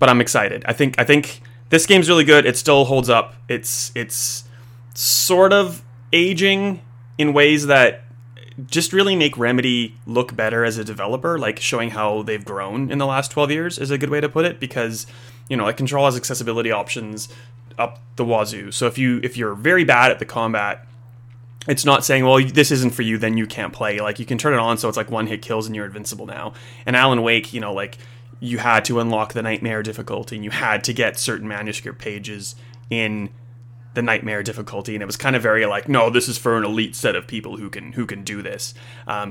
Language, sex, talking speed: English, male, 225 wpm